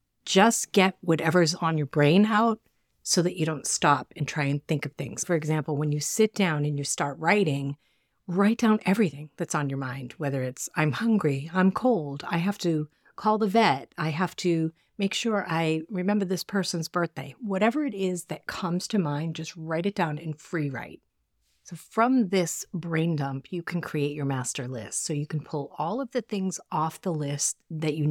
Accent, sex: American, female